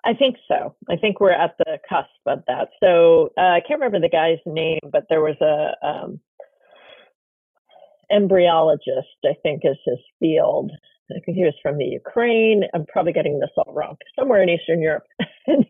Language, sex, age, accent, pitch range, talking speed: English, female, 40-59, American, 165-250 Hz, 185 wpm